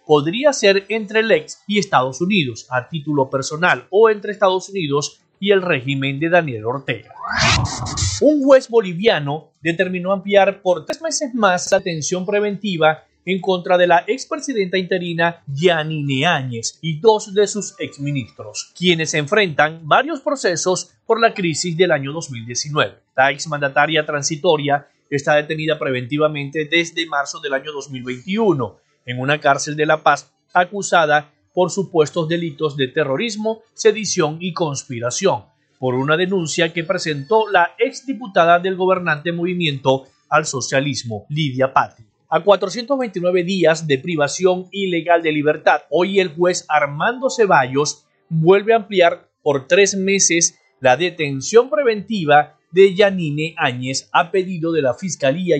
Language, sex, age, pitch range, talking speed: Spanish, male, 30-49, 145-195 Hz, 135 wpm